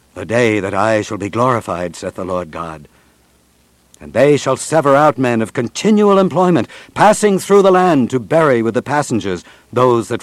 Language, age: English, 60-79